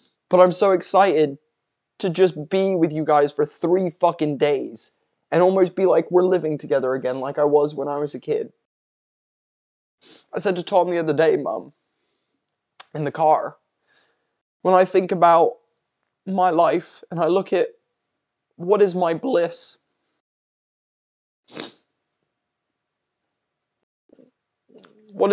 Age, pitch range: 20-39, 175-200 Hz